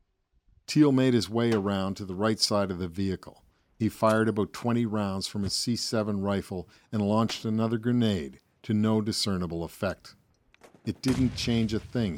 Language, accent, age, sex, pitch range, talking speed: English, American, 50-69, male, 95-115 Hz, 170 wpm